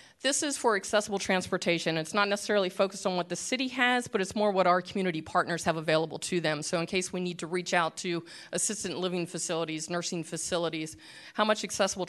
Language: English